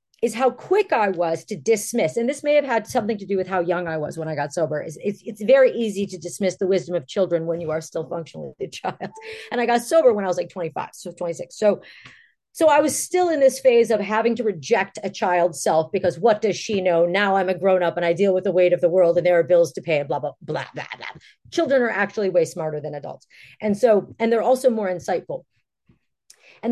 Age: 40-59